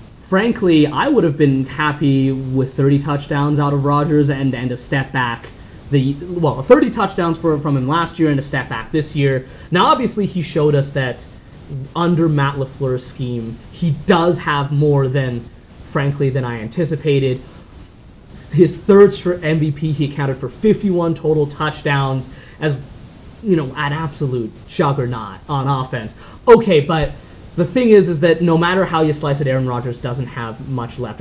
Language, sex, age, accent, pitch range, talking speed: English, male, 30-49, American, 135-165 Hz, 170 wpm